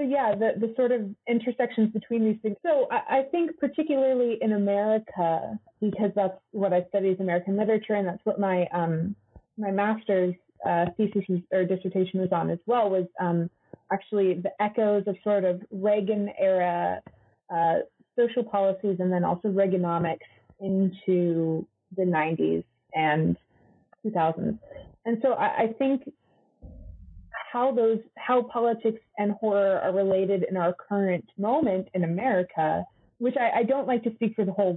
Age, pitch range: 30-49, 180-230 Hz